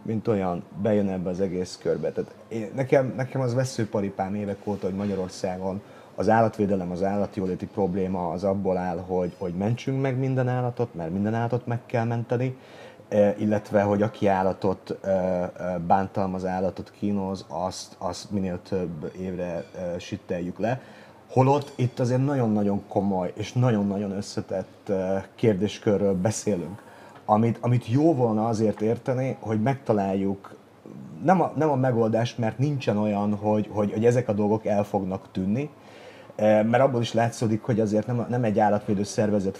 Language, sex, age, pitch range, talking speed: Hungarian, male, 30-49, 95-115 Hz, 145 wpm